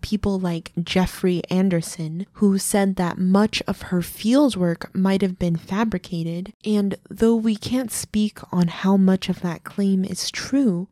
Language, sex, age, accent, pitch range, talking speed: English, female, 20-39, American, 185-220 Hz, 155 wpm